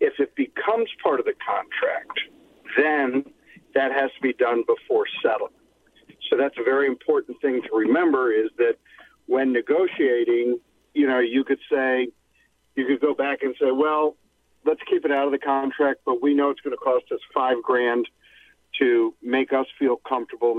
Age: 50-69